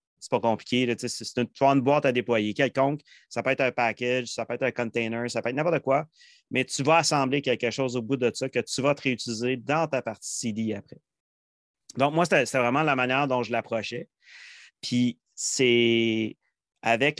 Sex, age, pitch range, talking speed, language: male, 30-49, 115-135 Hz, 215 wpm, French